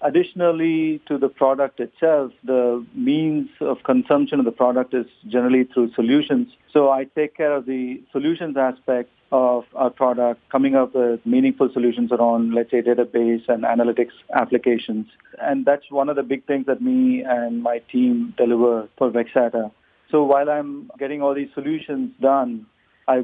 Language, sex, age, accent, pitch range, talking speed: English, male, 50-69, Indian, 120-145 Hz, 165 wpm